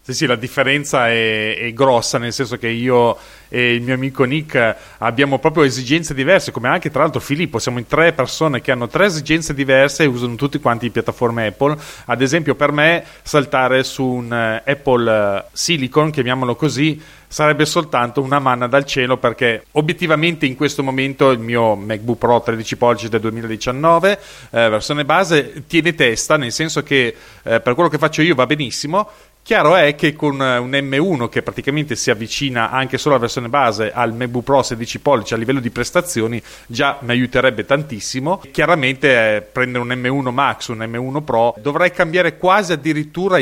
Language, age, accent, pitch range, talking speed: Italian, 30-49, native, 120-150 Hz, 175 wpm